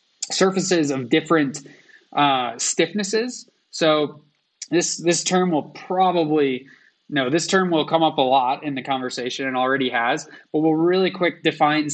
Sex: male